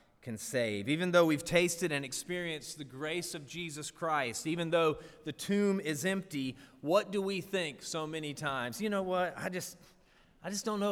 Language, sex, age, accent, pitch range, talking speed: English, male, 40-59, American, 150-190 Hz, 190 wpm